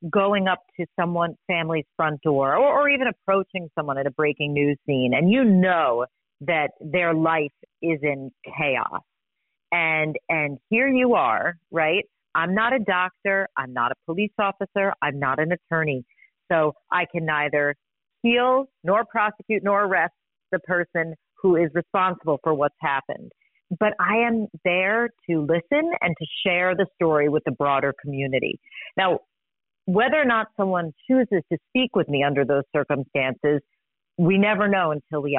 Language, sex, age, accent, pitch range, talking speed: English, female, 40-59, American, 155-200 Hz, 160 wpm